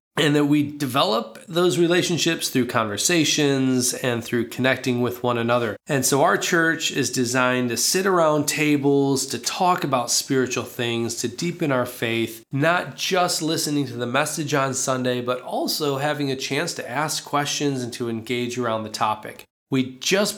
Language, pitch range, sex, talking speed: Polish, 125-155 Hz, male, 170 wpm